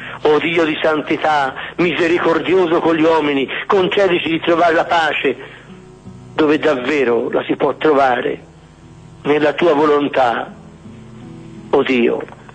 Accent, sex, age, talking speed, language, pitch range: native, male, 60-79, 125 wpm, Italian, 125-170 Hz